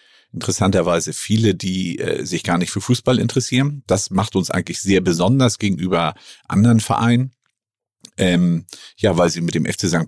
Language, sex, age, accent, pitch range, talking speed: German, male, 50-69, German, 85-110 Hz, 160 wpm